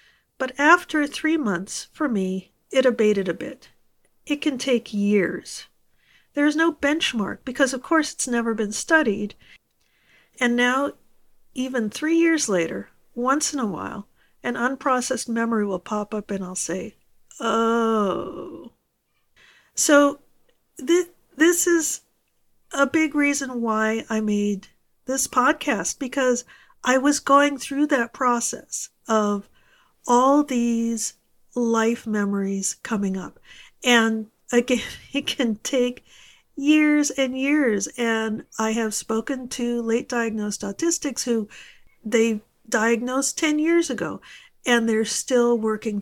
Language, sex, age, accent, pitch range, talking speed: English, female, 50-69, American, 215-275 Hz, 125 wpm